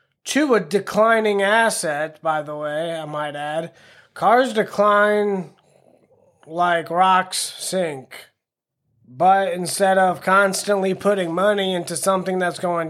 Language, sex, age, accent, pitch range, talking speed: English, male, 20-39, American, 170-210 Hz, 115 wpm